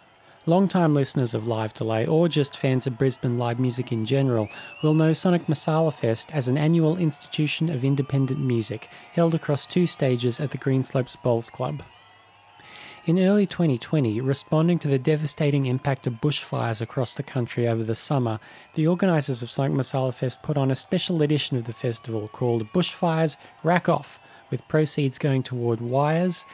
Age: 30-49